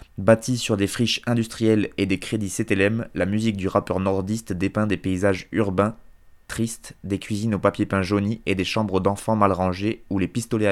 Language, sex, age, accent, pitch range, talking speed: French, male, 20-39, French, 100-115 Hz, 190 wpm